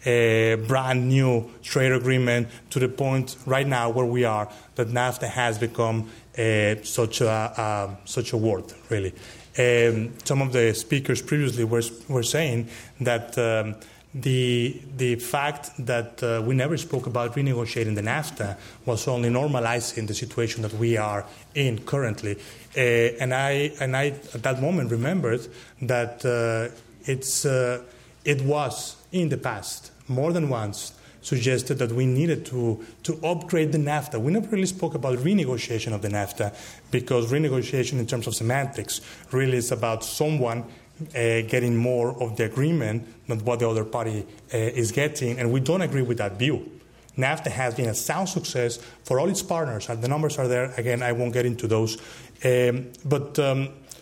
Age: 30-49